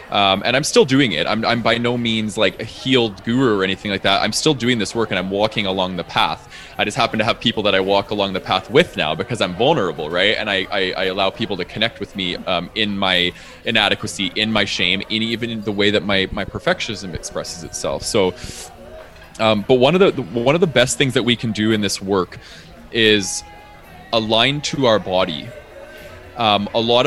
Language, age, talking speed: English, 20-39, 225 wpm